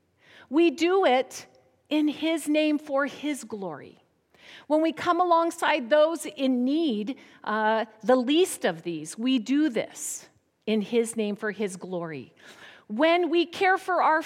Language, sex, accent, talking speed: English, female, American, 145 wpm